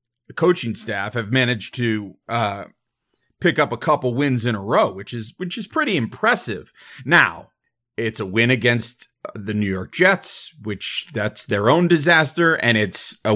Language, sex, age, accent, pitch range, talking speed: English, male, 30-49, American, 115-155 Hz, 170 wpm